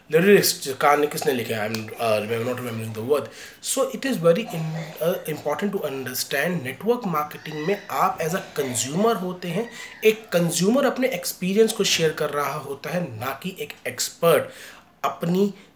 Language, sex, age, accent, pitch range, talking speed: Hindi, male, 30-49, native, 135-195 Hz, 110 wpm